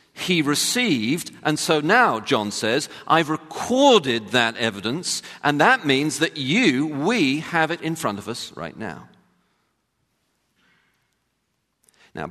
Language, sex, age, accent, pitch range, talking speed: English, male, 40-59, British, 100-150 Hz, 125 wpm